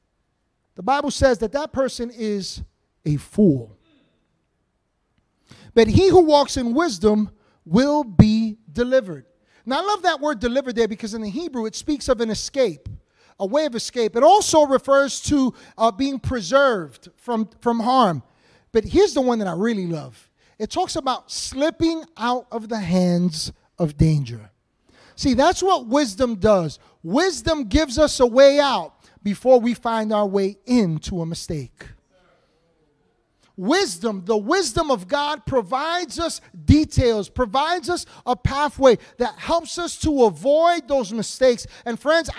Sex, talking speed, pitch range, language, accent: male, 150 wpm, 210-300 Hz, English, American